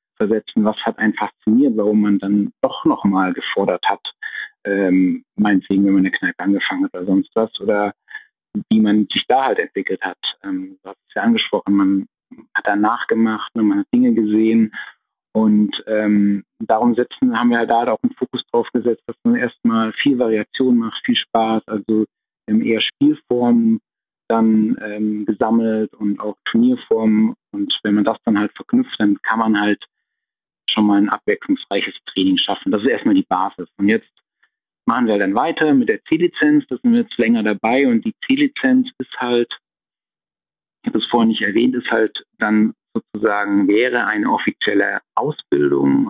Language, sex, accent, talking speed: German, male, German, 170 wpm